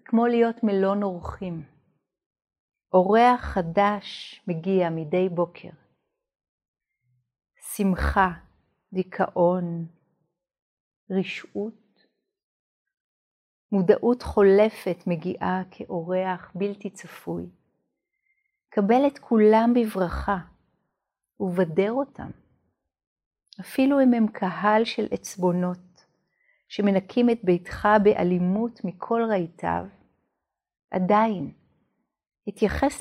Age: 50-69